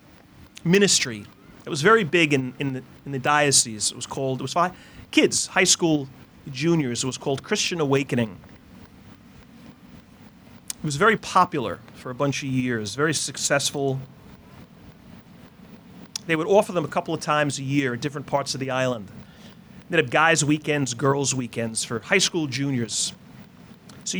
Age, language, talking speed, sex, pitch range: 40-59, English, 160 wpm, male, 130-170 Hz